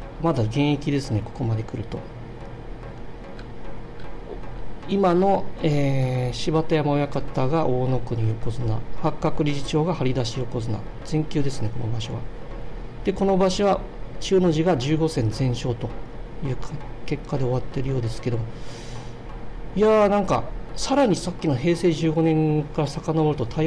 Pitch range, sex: 115-155 Hz, male